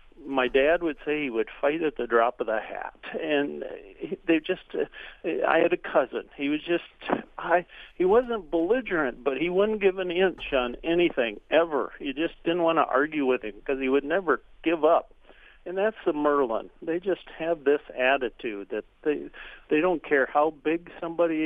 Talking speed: 185 wpm